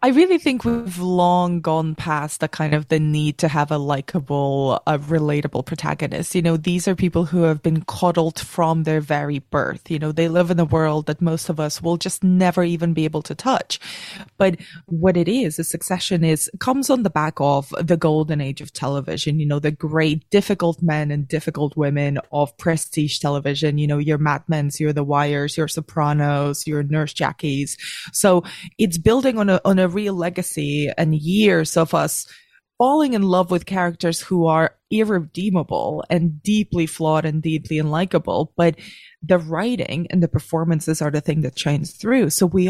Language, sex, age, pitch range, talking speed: English, female, 20-39, 150-180 Hz, 190 wpm